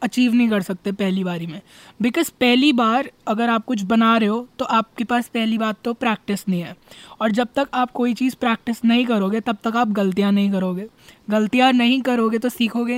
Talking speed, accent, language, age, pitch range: 210 wpm, native, Hindi, 20-39, 200-250 Hz